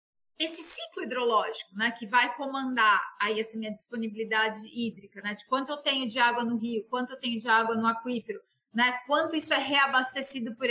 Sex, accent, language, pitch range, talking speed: female, Brazilian, Portuguese, 225-305 Hz, 185 wpm